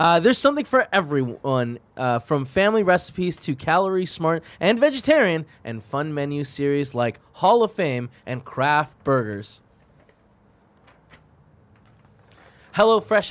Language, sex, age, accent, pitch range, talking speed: English, male, 20-39, American, 125-180 Hz, 115 wpm